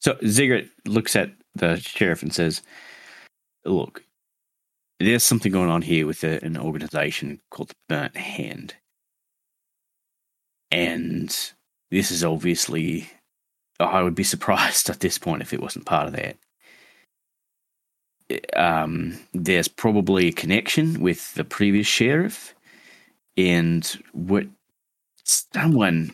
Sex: male